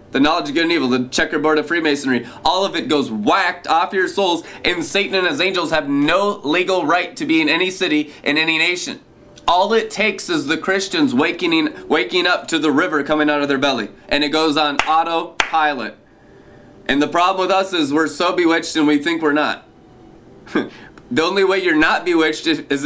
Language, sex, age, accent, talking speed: English, male, 20-39, American, 205 wpm